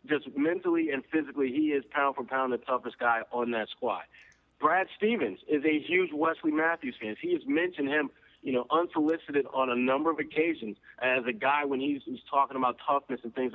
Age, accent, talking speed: 40-59, American, 205 wpm